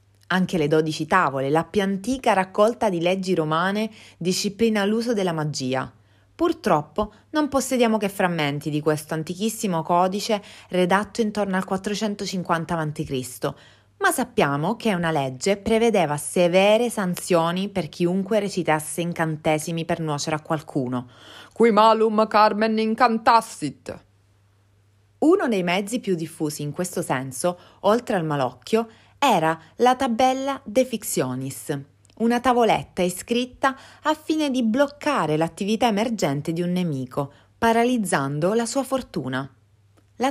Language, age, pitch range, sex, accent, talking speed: Italian, 30-49, 155-225 Hz, female, native, 120 wpm